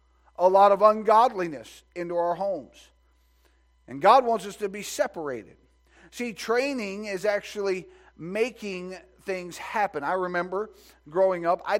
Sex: male